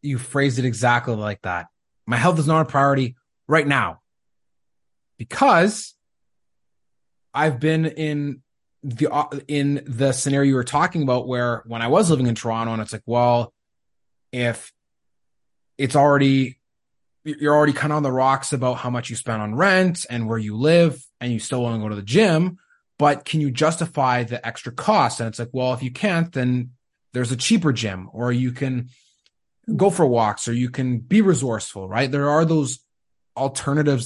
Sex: male